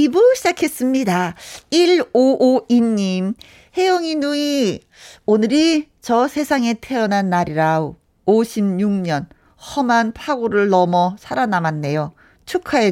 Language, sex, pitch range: Korean, female, 185-285 Hz